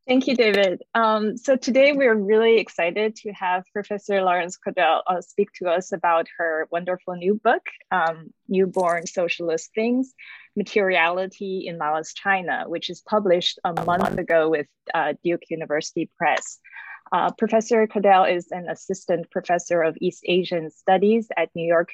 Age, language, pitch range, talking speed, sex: 20-39, English, 165-205 Hz, 155 wpm, female